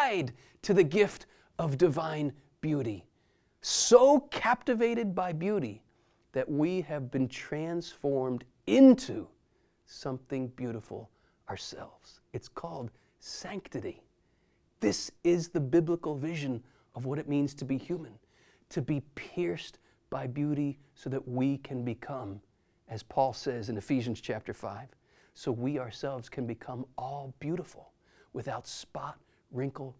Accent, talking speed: American, 120 wpm